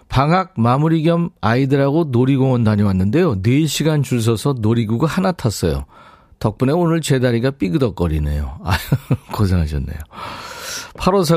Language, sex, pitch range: Korean, male, 100-165 Hz